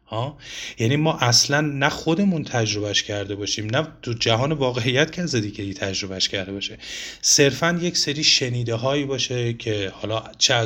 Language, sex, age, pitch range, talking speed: Persian, male, 30-49, 105-145 Hz, 160 wpm